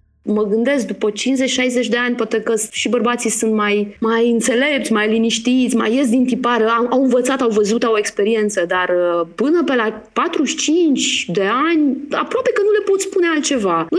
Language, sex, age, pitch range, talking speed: Romanian, female, 20-39, 210-315 Hz, 175 wpm